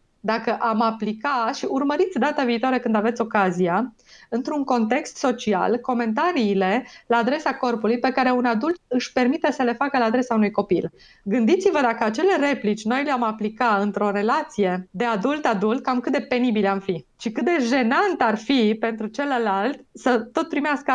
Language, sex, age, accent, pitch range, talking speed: Romanian, female, 20-39, native, 225-275 Hz, 165 wpm